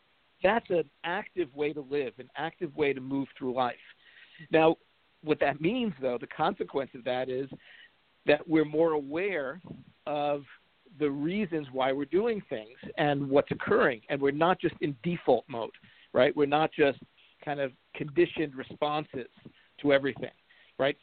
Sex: male